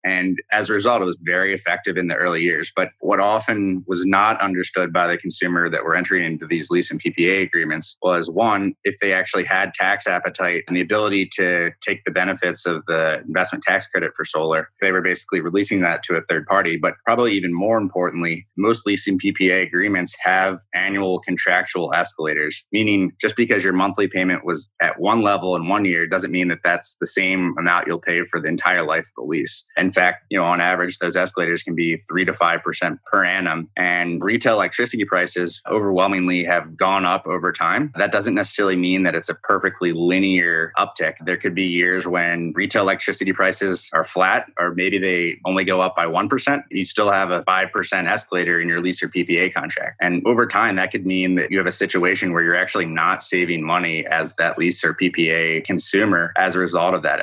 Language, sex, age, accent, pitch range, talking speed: English, male, 30-49, American, 85-95 Hz, 205 wpm